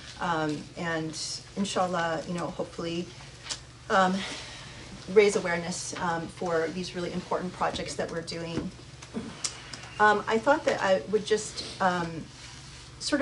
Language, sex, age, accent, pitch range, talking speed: English, female, 30-49, American, 165-195 Hz, 125 wpm